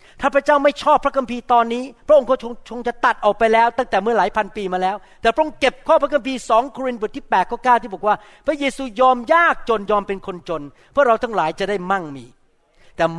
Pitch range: 180-255 Hz